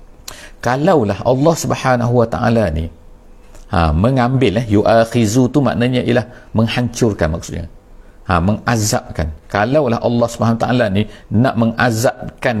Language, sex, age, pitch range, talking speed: English, male, 50-69, 100-125 Hz, 115 wpm